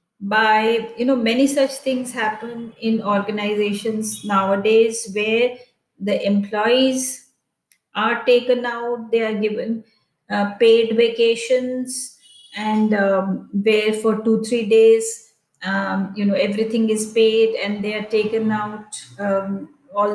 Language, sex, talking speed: English, female, 125 wpm